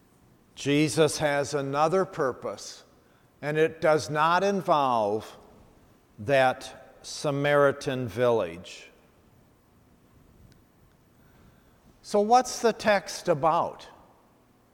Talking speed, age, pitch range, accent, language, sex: 70 wpm, 50-69, 135-175 Hz, American, English, male